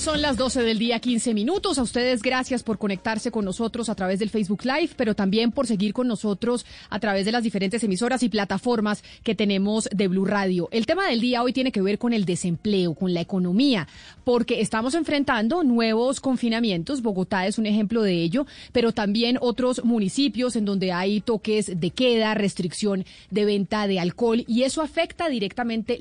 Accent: Colombian